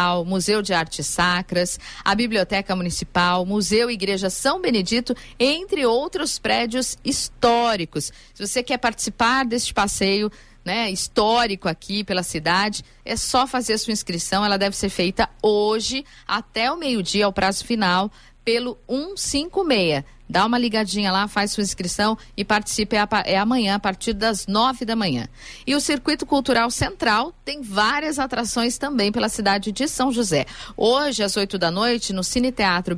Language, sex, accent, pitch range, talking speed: Portuguese, female, Brazilian, 200-255 Hz, 155 wpm